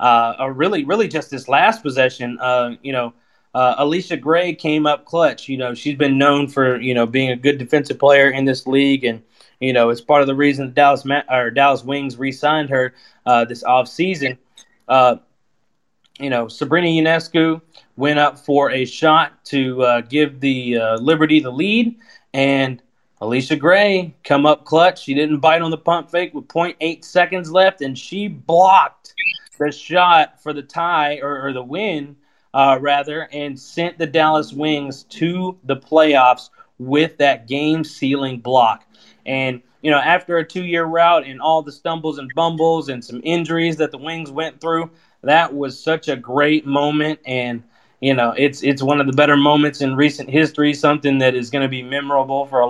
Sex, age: male, 20-39